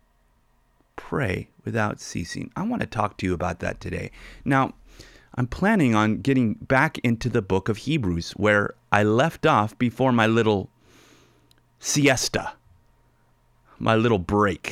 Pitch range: 95-120 Hz